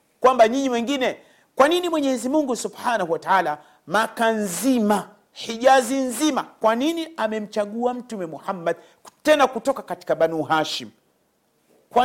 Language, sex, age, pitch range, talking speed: Swahili, male, 40-59, 180-250 Hz, 120 wpm